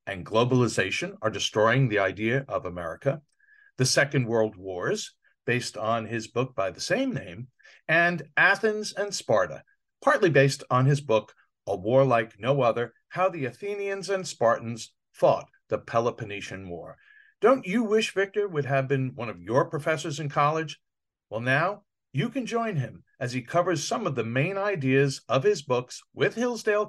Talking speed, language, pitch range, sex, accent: 165 wpm, English, 130-190 Hz, male, American